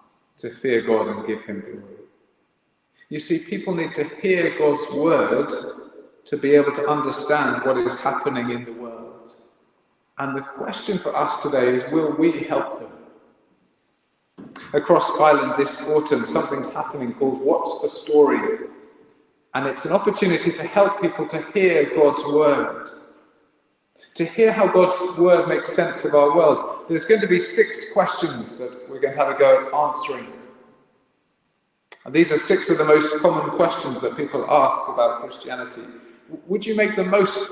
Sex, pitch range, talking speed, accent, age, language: male, 145-195 Hz, 165 wpm, British, 40-59, English